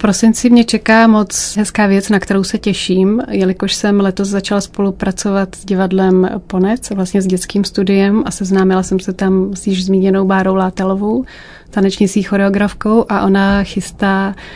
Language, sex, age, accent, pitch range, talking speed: Czech, female, 30-49, native, 185-205 Hz, 155 wpm